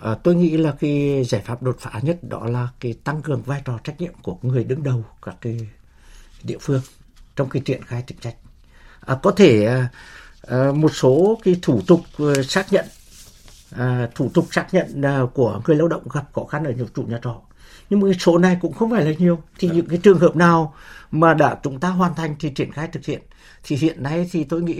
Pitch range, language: 120-160 Hz, Vietnamese